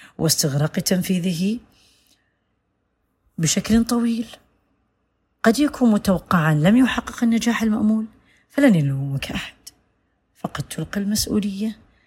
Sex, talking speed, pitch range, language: female, 85 wpm, 155-230 Hz, Arabic